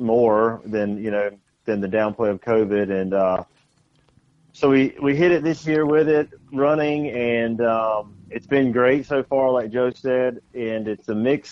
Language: English